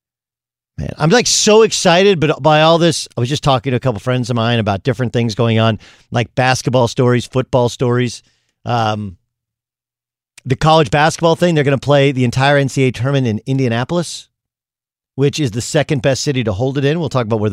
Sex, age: male, 50-69